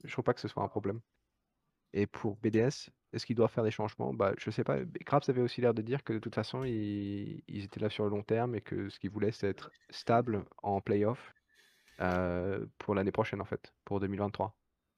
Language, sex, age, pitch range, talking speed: French, male, 20-39, 100-115 Hz, 235 wpm